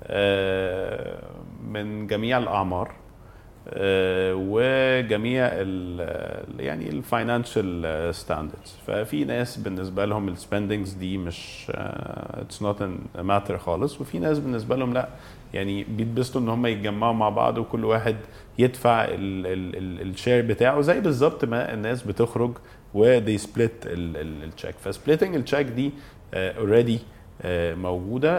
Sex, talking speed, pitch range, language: male, 105 wpm, 100-120 Hz, Arabic